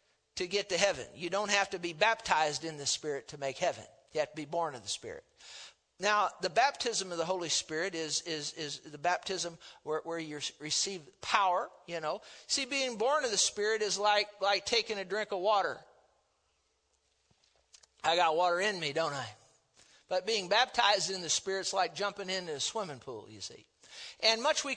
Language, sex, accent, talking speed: English, male, American, 195 wpm